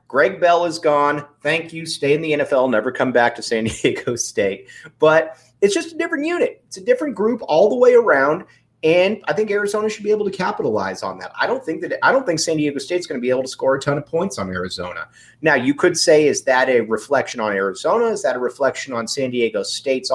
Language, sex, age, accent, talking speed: English, male, 30-49, American, 245 wpm